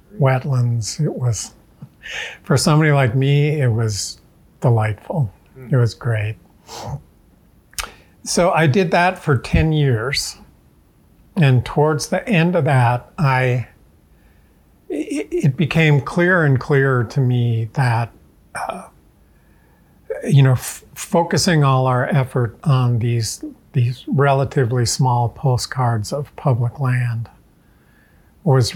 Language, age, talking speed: English, 50-69, 110 wpm